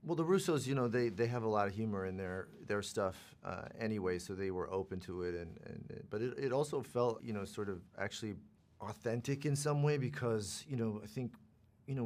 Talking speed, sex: 235 wpm, male